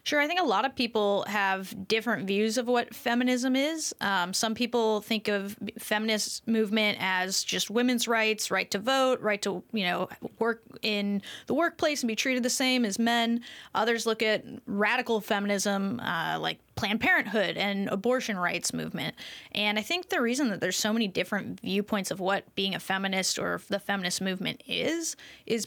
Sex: female